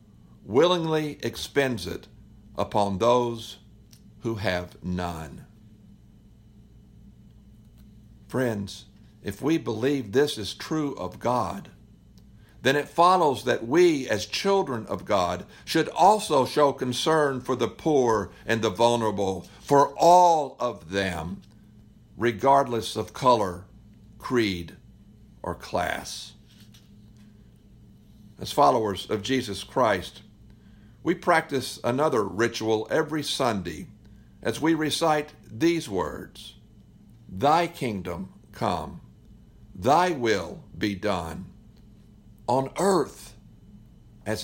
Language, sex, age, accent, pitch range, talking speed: English, male, 60-79, American, 105-135 Hz, 95 wpm